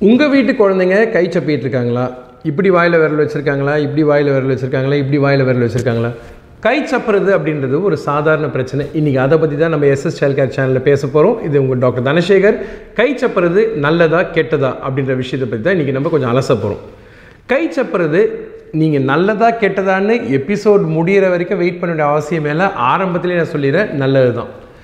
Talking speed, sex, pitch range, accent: 150 wpm, male, 135-195 Hz, native